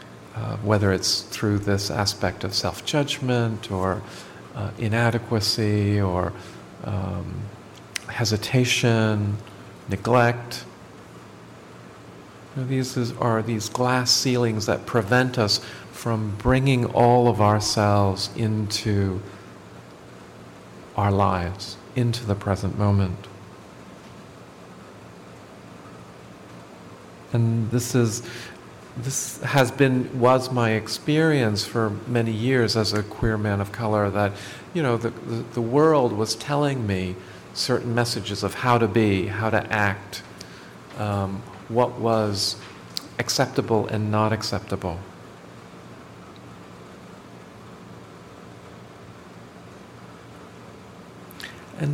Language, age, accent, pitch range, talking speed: English, 50-69, American, 100-120 Hz, 90 wpm